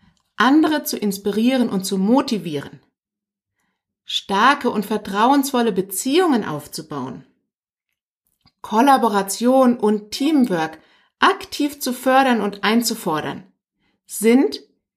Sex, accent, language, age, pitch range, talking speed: female, German, German, 50-69, 200-265 Hz, 80 wpm